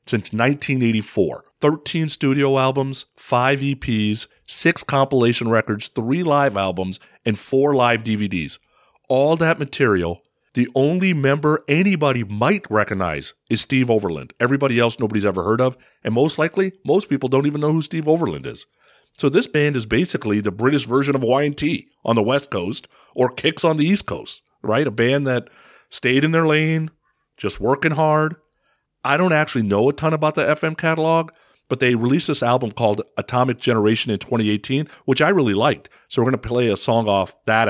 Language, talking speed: English, 180 wpm